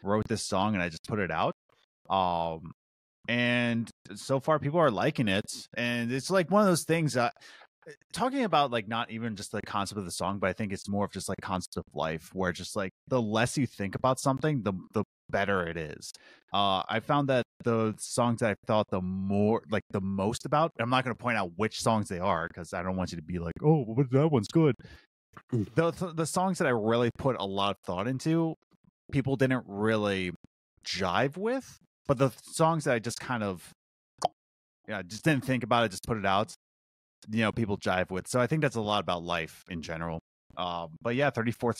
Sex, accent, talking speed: male, American, 220 wpm